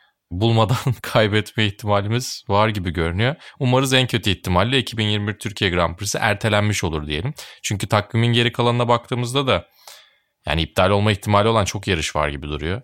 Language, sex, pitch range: Turkish, male, 85-120 Hz